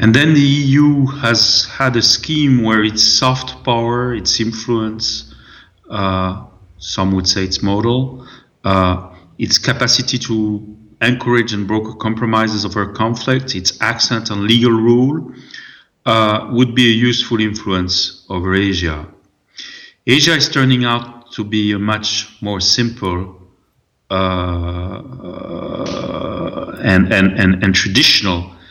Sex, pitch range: male, 95-115 Hz